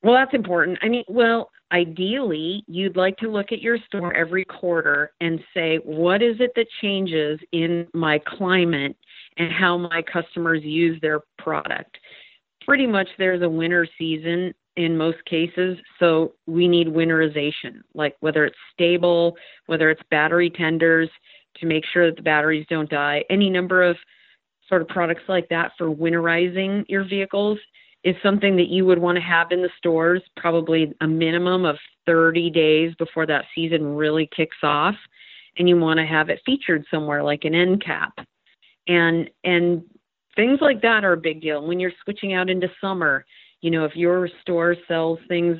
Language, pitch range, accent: English, 160-185 Hz, American